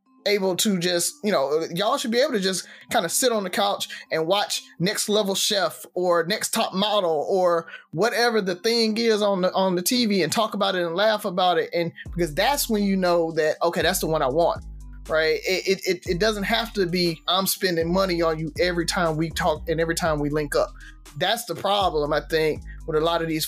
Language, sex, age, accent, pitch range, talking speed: English, male, 20-39, American, 170-220 Hz, 230 wpm